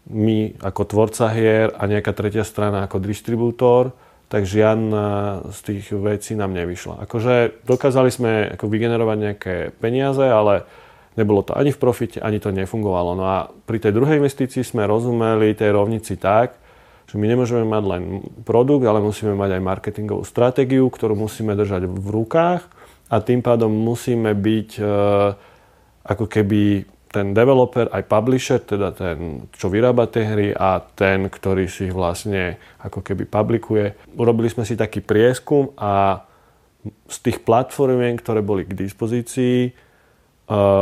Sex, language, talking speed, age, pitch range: male, Slovak, 145 wpm, 30-49, 100-115 Hz